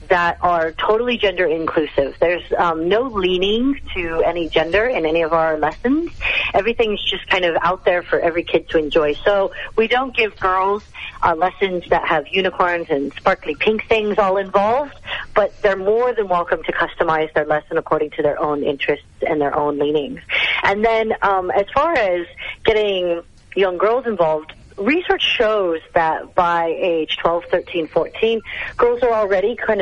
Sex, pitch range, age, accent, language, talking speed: female, 165-215 Hz, 40-59, American, English, 170 wpm